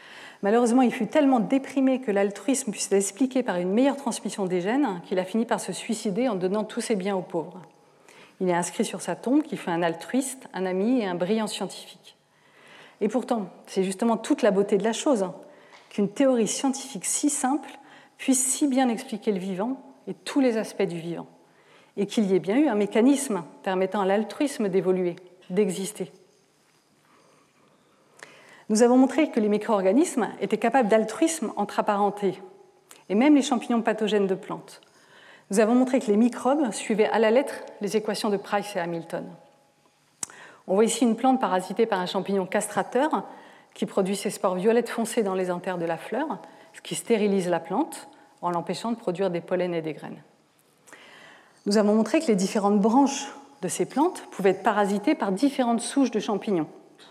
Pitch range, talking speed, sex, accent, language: 195-255 Hz, 180 wpm, female, French, French